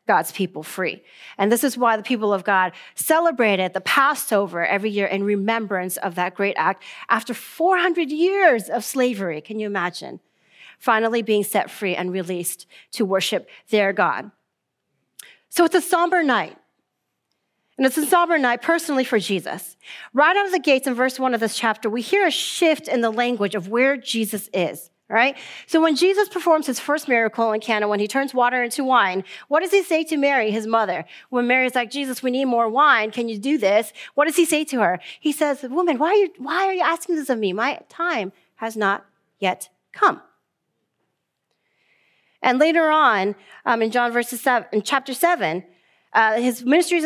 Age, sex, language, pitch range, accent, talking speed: 40-59, female, English, 215-310 Hz, American, 195 wpm